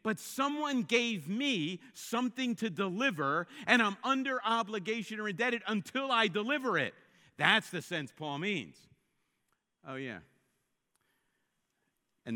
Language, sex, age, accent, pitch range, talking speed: English, male, 50-69, American, 140-225 Hz, 120 wpm